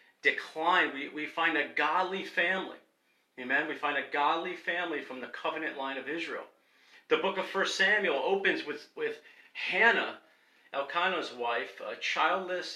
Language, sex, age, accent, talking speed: English, male, 40-59, American, 150 wpm